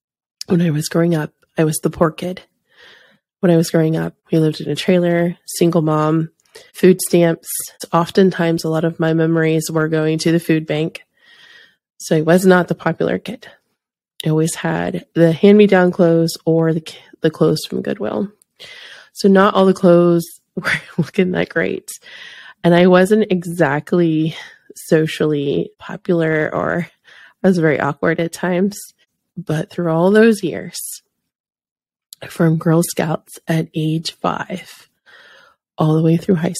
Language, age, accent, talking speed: English, 20-39, American, 150 wpm